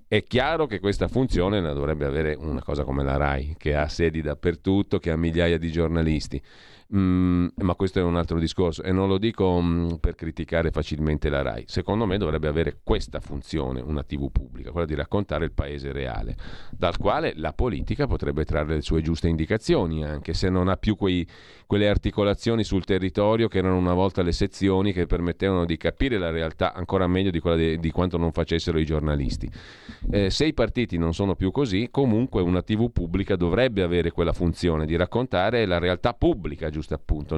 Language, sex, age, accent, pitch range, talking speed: Italian, male, 40-59, native, 80-100 Hz, 190 wpm